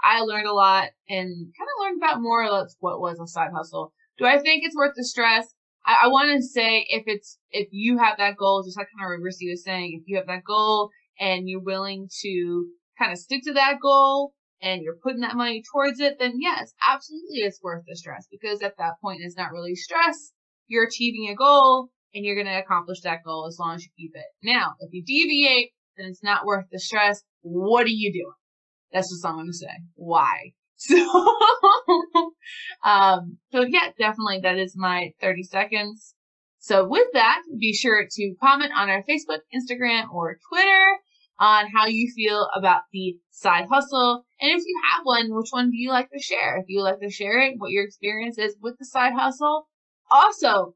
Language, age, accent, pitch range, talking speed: English, 20-39, American, 190-275 Hz, 205 wpm